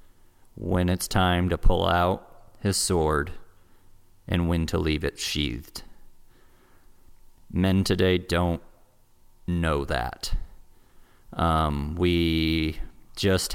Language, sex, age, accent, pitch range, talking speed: English, male, 30-49, American, 80-95 Hz, 95 wpm